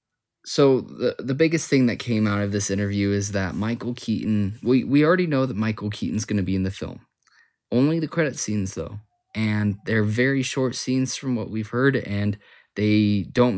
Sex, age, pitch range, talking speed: male, 20-39, 95-115 Hz, 200 wpm